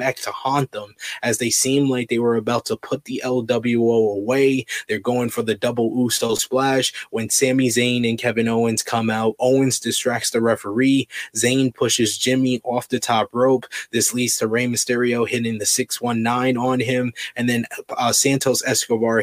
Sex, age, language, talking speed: male, 20-39, English, 175 wpm